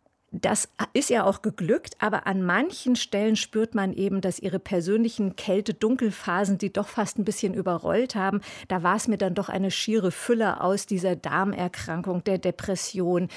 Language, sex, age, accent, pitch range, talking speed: German, female, 50-69, German, 185-225 Hz, 165 wpm